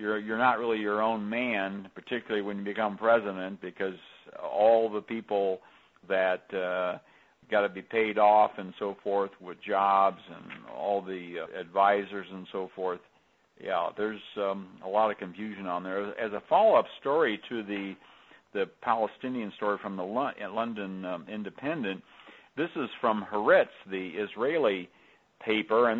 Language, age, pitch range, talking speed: English, 60-79, 95-115 Hz, 155 wpm